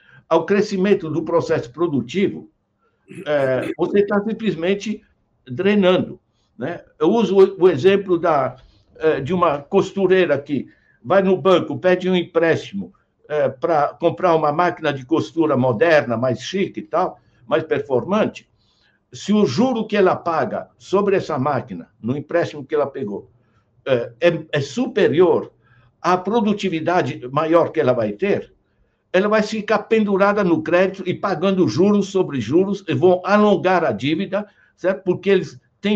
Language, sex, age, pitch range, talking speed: Portuguese, male, 60-79, 155-195 Hz, 135 wpm